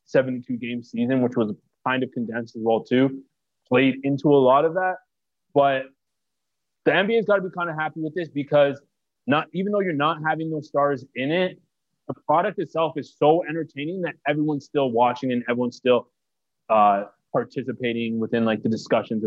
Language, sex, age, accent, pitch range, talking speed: English, male, 20-39, American, 120-150 Hz, 180 wpm